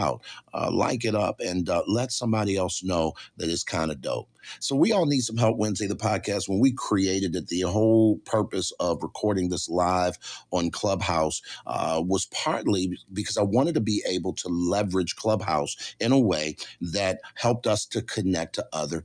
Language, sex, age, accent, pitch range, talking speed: English, male, 50-69, American, 90-110 Hz, 185 wpm